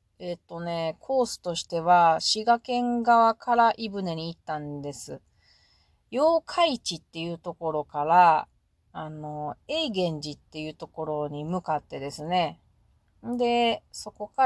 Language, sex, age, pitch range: Japanese, female, 30-49, 155-225 Hz